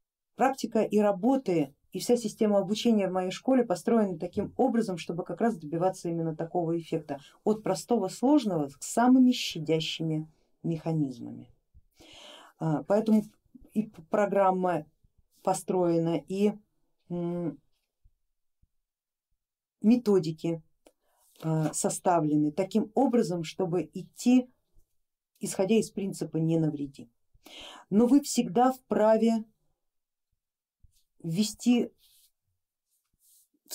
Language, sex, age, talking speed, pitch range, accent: Russian, female, 40-59, 90 wpm, 160-210 Hz, native